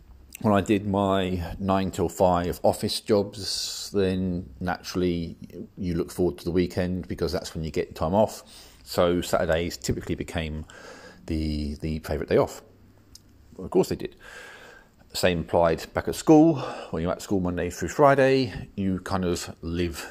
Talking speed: 160 wpm